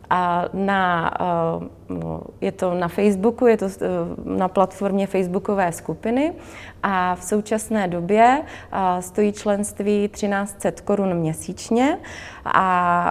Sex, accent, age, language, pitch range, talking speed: female, native, 20-39, Czech, 185-205 Hz, 95 wpm